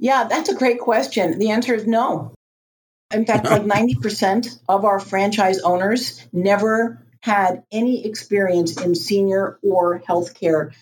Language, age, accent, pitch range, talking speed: English, 50-69, American, 165-210 Hz, 140 wpm